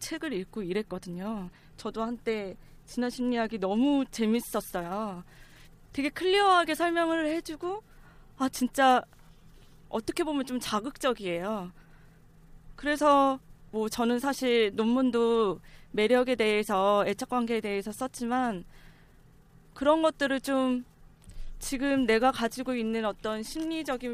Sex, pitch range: female, 200-265 Hz